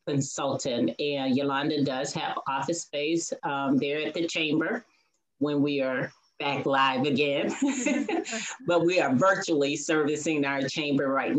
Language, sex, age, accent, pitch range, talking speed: English, female, 30-49, American, 140-210 Hz, 135 wpm